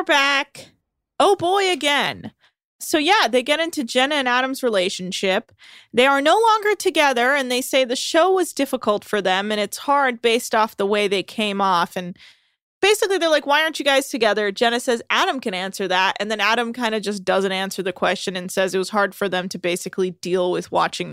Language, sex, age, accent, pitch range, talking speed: English, female, 20-39, American, 195-275 Hz, 210 wpm